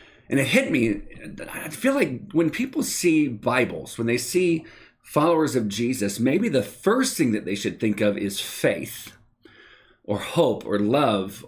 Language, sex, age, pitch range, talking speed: English, male, 40-59, 115-165 Hz, 165 wpm